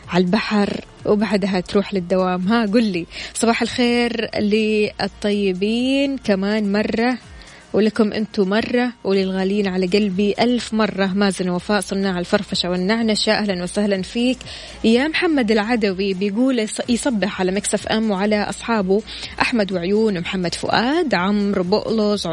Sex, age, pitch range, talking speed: female, 20-39, 195-225 Hz, 120 wpm